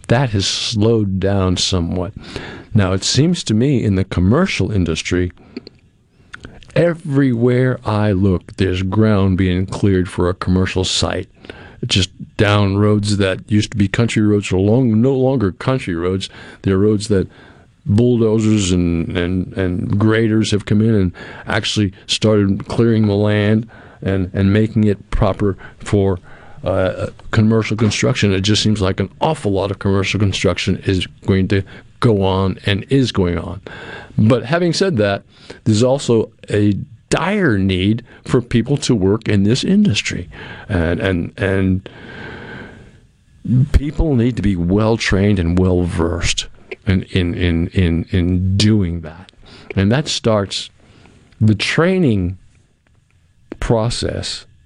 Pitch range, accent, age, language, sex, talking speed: 95-115 Hz, American, 50-69, English, male, 135 wpm